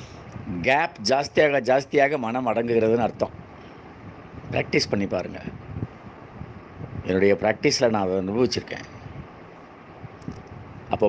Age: 50-69